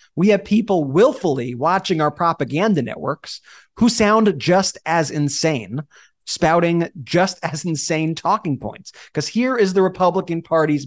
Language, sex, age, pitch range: English, male, 30-49, 140-190 Hz